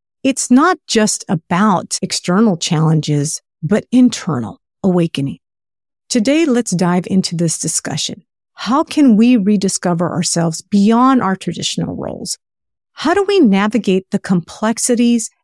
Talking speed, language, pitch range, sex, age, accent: 115 wpm, English, 175-250 Hz, female, 50-69, American